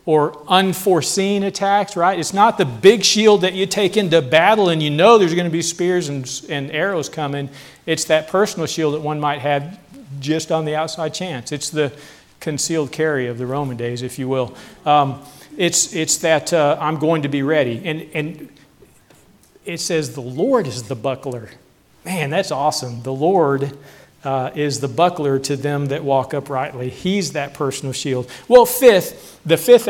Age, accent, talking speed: 40-59, American, 185 wpm